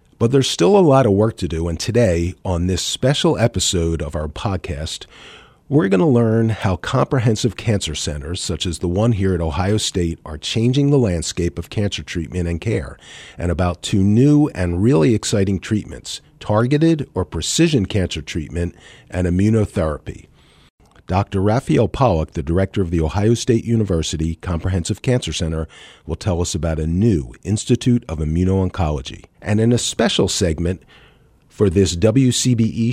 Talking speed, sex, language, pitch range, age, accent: 160 wpm, male, English, 85-115 Hz, 40-59, American